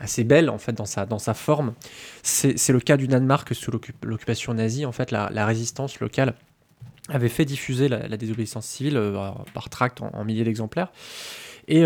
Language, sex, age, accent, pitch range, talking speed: French, male, 20-39, French, 115-150 Hz, 195 wpm